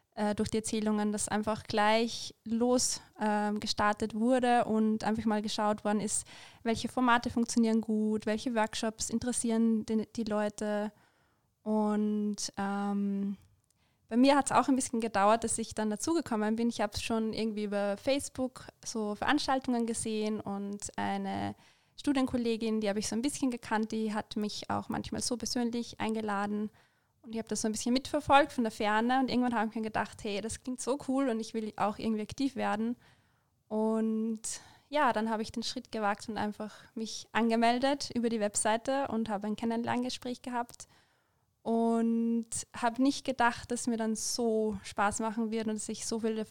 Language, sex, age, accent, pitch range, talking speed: German, female, 20-39, German, 215-235 Hz, 175 wpm